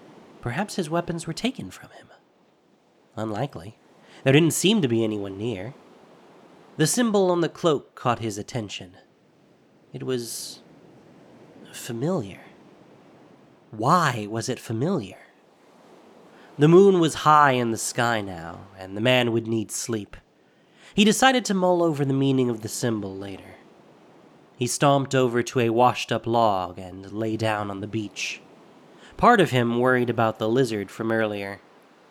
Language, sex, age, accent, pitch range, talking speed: English, male, 30-49, American, 105-145 Hz, 145 wpm